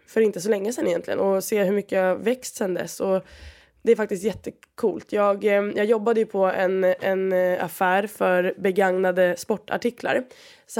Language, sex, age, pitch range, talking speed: Swedish, female, 20-39, 180-220 Hz, 170 wpm